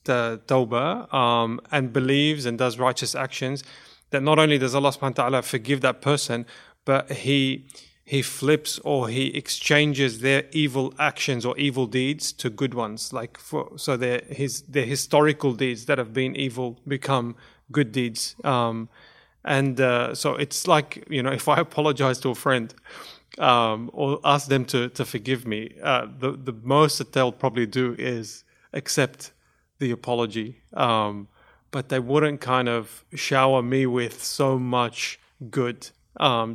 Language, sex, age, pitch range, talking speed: English, male, 30-49, 125-140 Hz, 155 wpm